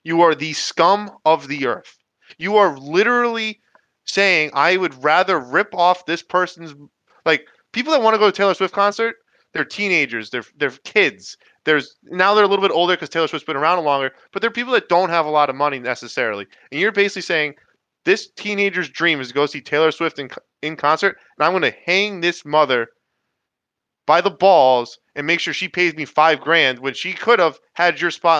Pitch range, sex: 150-195 Hz, male